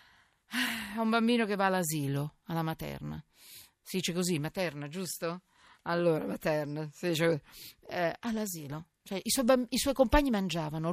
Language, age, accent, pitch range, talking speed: Italian, 50-69, native, 170-225 Hz, 135 wpm